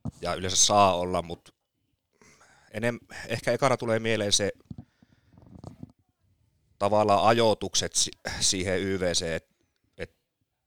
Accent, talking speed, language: native, 85 wpm, Finnish